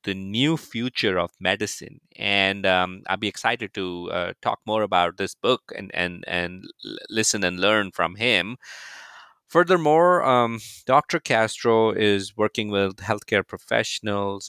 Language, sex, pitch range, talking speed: English, male, 90-110 Hz, 145 wpm